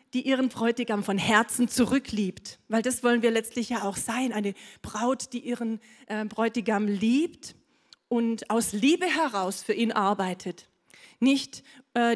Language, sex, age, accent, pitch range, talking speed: German, female, 40-59, German, 210-250 Hz, 150 wpm